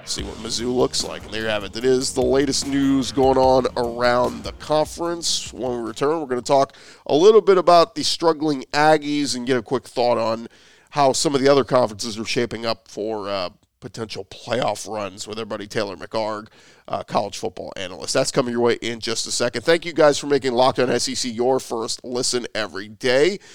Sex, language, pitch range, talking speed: male, English, 115-145 Hz, 210 wpm